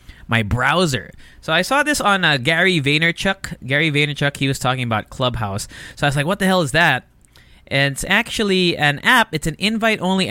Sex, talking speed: male, 200 wpm